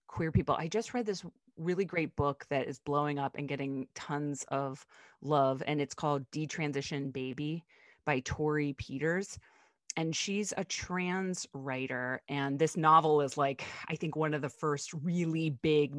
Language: English